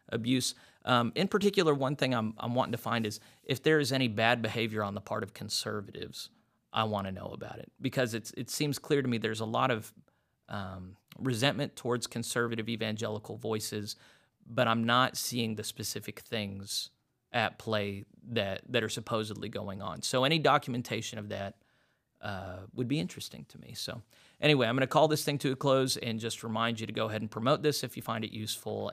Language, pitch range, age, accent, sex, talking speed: English, 110-130 Hz, 30-49, American, male, 200 wpm